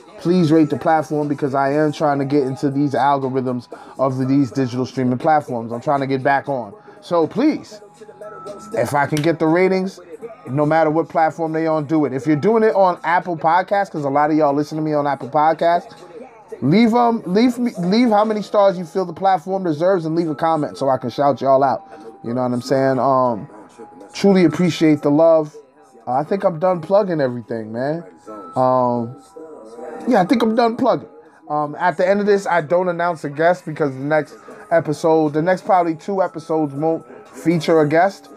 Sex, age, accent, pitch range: male, 20-39, American, 140-175 Hz